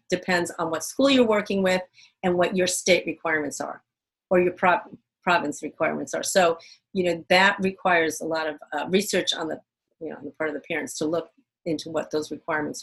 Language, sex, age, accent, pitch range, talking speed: English, female, 40-59, American, 170-220 Hz, 210 wpm